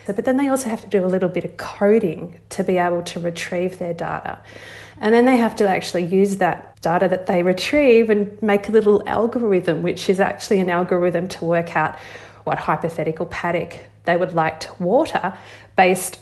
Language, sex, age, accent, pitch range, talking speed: English, female, 30-49, Australian, 165-200 Hz, 195 wpm